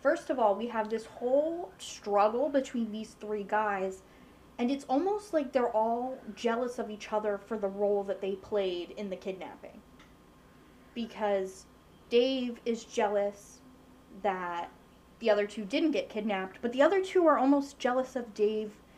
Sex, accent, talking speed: female, American, 160 wpm